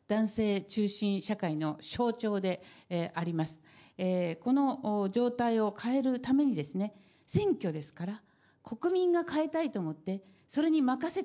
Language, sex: Japanese, female